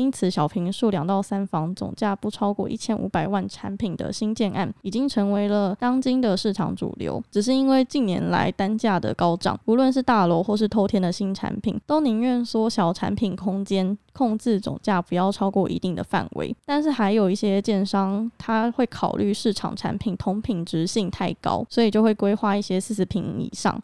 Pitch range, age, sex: 190-225 Hz, 10-29, female